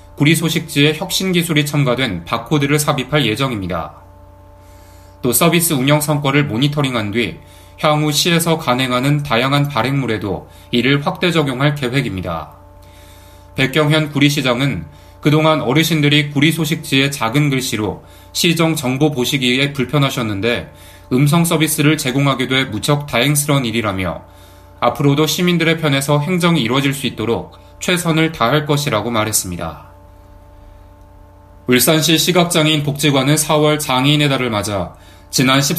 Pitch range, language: 100-155 Hz, Korean